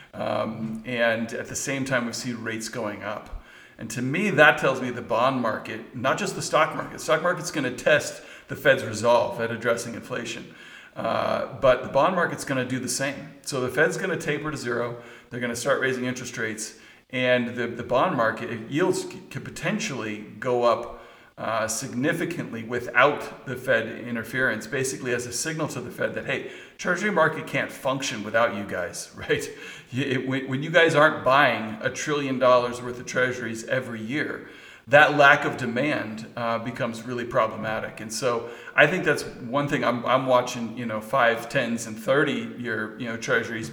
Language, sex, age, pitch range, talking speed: English, male, 40-59, 115-135 Hz, 190 wpm